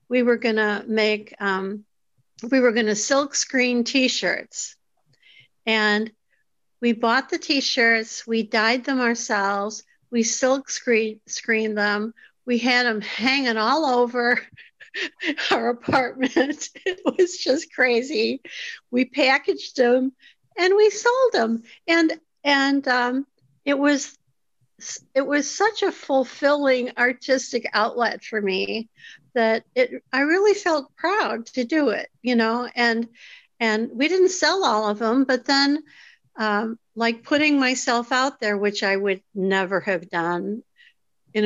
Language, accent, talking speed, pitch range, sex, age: English, American, 135 wpm, 215-275 Hz, female, 50-69